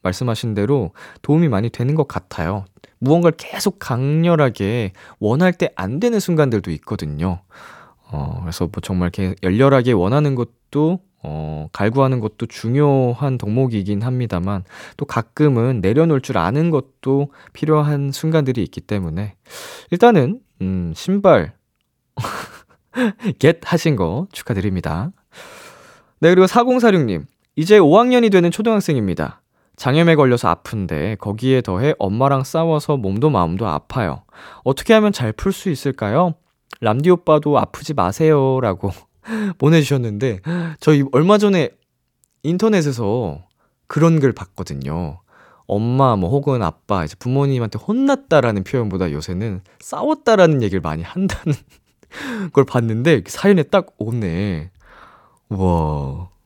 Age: 20-39